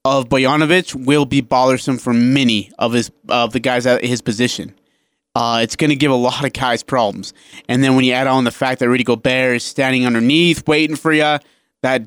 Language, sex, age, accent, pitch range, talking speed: English, male, 30-49, American, 125-155 Hz, 215 wpm